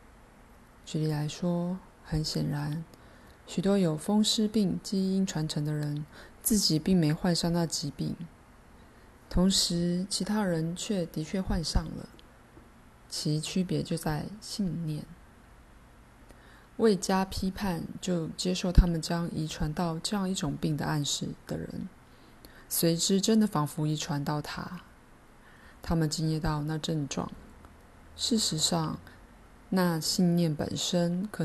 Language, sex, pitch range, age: Chinese, female, 150-185 Hz, 20-39